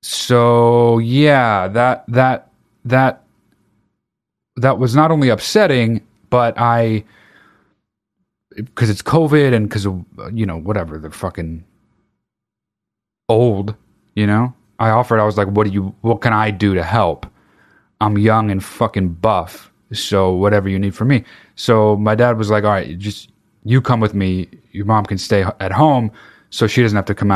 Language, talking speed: English, 165 wpm